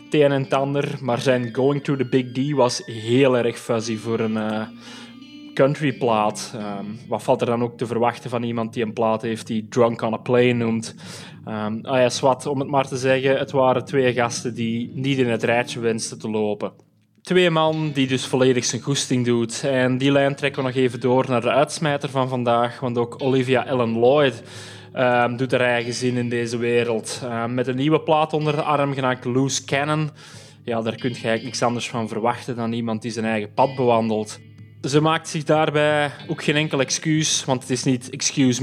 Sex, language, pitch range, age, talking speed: male, Dutch, 115-140 Hz, 20-39, 200 wpm